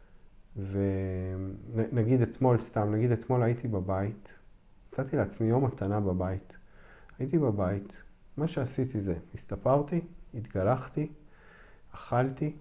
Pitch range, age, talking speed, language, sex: 100-130 Hz, 40-59, 95 wpm, Hebrew, male